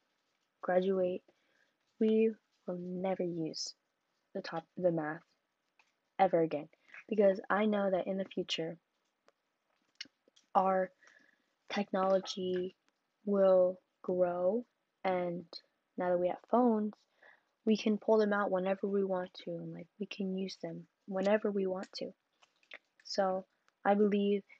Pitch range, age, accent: 175-200 Hz, 10-29, American